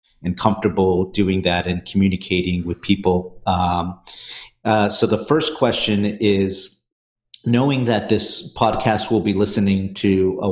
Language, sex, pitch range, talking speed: English, male, 95-105 Hz, 135 wpm